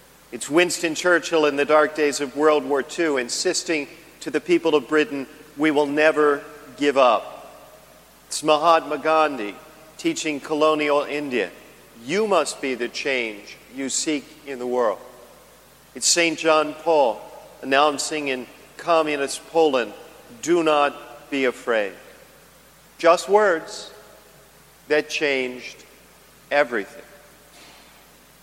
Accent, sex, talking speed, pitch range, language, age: American, male, 115 wpm, 135-160 Hz, English, 50-69